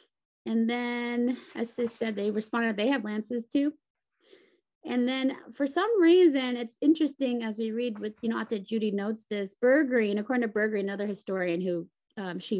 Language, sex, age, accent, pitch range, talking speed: English, female, 20-39, American, 205-295 Hz, 175 wpm